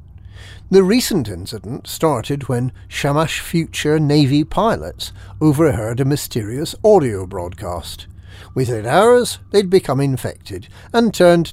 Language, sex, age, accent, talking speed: English, male, 50-69, British, 110 wpm